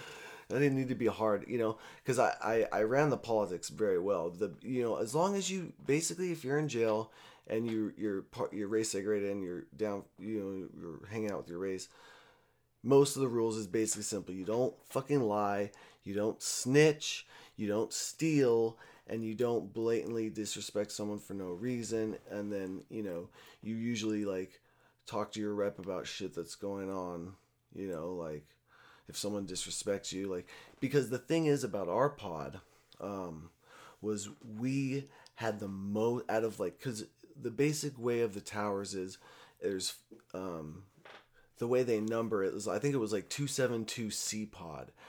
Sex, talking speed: male, 180 wpm